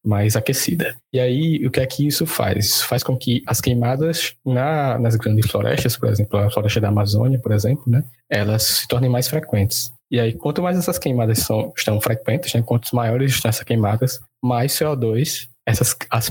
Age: 20-39